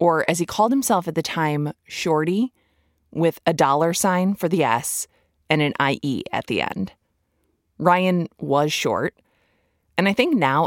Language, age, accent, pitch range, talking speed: English, 20-39, American, 140-185 Hz, 165 wpm